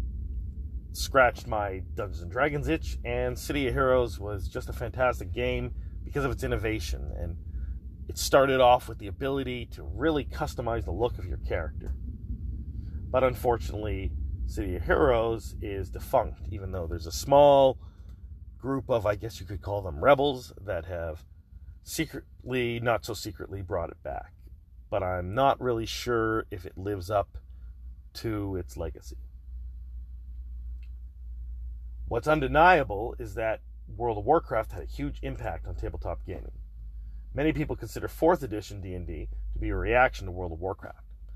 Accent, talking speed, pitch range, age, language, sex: American, 150 wpm, 75-115 Hz, 30-49, English, male